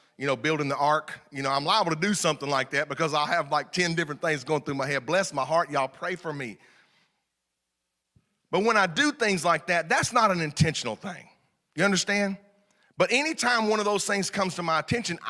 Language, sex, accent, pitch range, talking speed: English, male, American, 150-210 Hz, 220 wpm